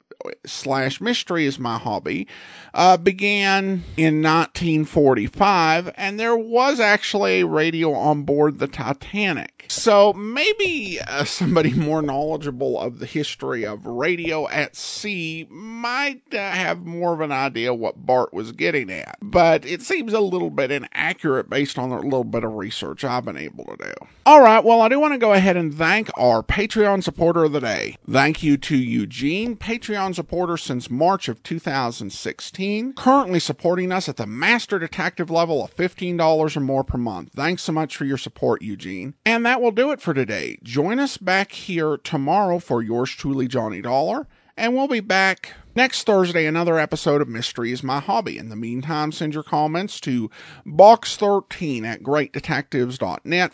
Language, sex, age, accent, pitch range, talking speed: English, male, 50-69, American, 135-195 Hz, 170 wpm